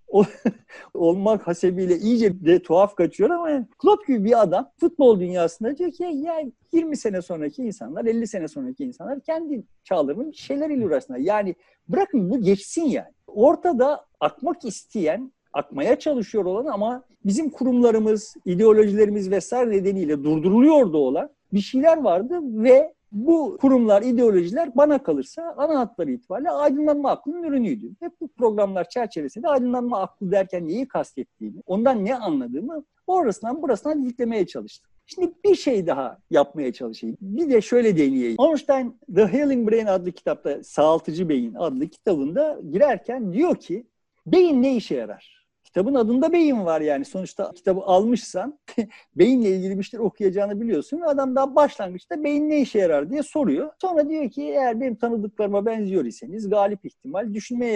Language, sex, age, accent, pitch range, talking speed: Turkish, male, 50-69, native, 195-290 Hz, 145 wpm